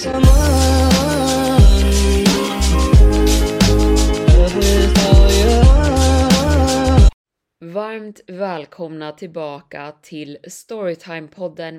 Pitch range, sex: 145-185 Hz, female